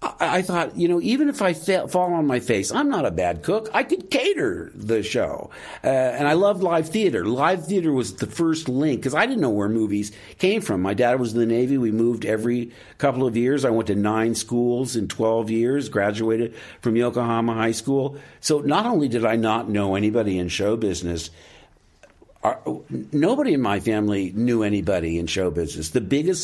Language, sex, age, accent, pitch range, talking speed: English, male, 60-79, American, 110-150 Hz, 200 wpm